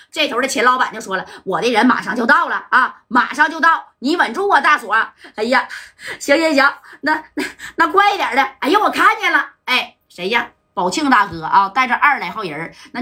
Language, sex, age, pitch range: Chinese, female, 30-49, 240-310 Hz